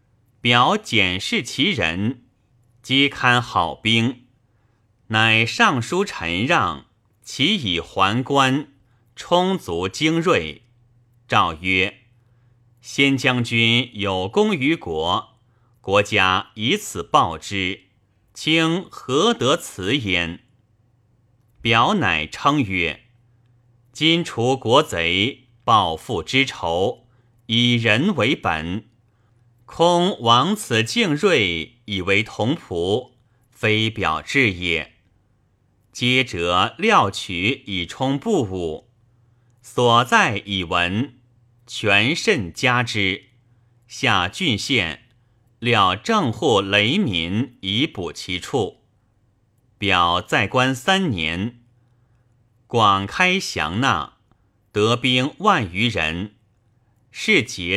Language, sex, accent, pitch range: Chinese, male, native, 105-125 Hz